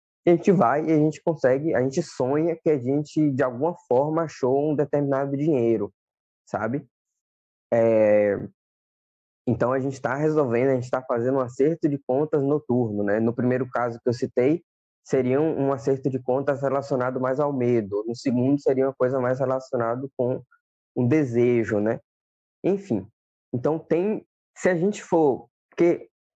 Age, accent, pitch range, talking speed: 20-39, Brazilian, 115-155 Hz, 165 wpm